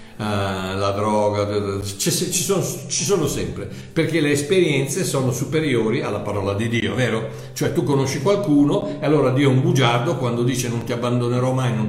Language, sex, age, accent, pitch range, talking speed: Italian, male, 60-79, native, 120-200 Hz, 165 wpm